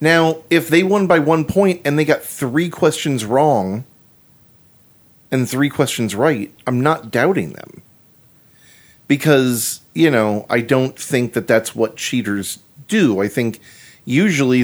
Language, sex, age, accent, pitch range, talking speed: English, male, 40-59, American, 120-160 Hz, 145 wpm